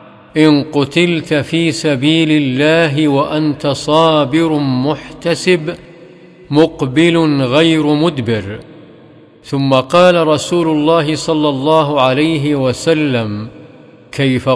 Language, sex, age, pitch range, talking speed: Arabic, male, 50-69, 140-160 Hz, 80 wpm